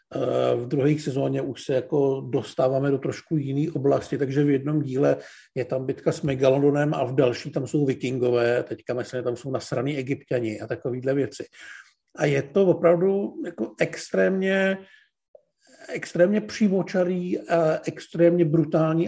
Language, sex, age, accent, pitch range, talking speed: Czech, male, 50-69, native, 130-165 Hz, 145 wpm